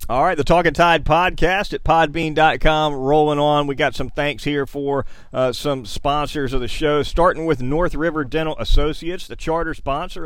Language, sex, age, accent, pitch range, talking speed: English, male, 40-59, American, 125-150 Hz, 180 wpm